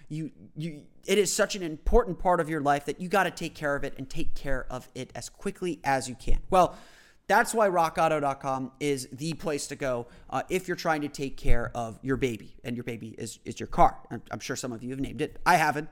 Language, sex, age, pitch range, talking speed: English, male, 30-49, 135-175 Hz, 245 wpm